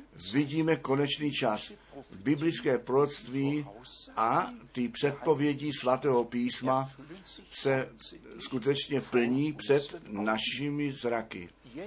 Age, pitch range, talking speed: 50-69, 115-140 Hz, 80 wpm